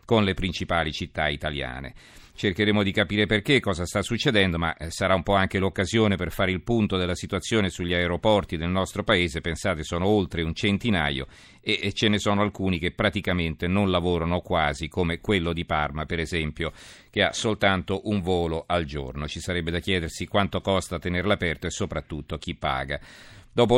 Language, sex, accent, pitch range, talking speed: Italian, male, native, 85-105 Hz, 175 wpm